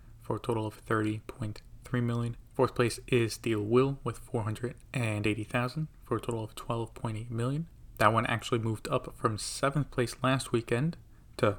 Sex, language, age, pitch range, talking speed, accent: male, English, 30-49, 115-130 Hz, 155 wpm, American